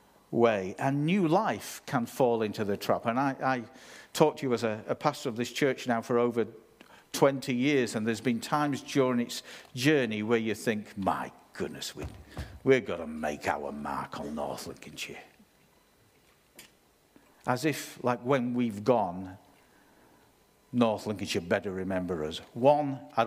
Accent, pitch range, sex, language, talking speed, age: British, 100-130 Hz, male, English, 155 wpm, 50-69